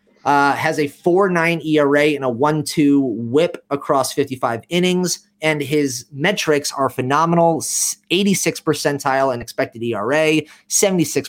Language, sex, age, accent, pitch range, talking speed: English, male, 30-49, American, 135-175 Hz, 120 wpm